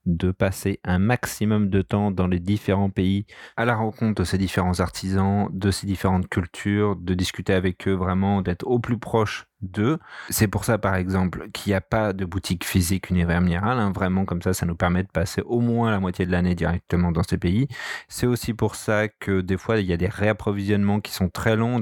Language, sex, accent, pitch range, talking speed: French, male, French, 95-110 Hz, 215 wpm